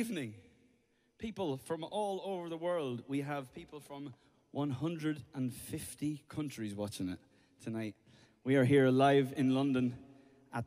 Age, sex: 20-39, male